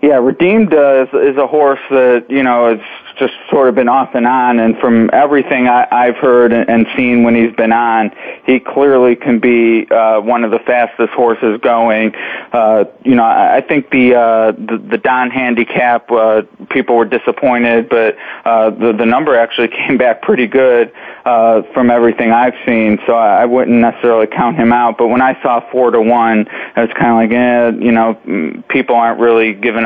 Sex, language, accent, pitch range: male, English, American, 115-120 Hz